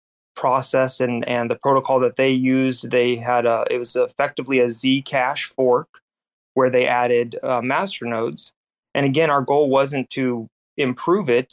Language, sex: English, male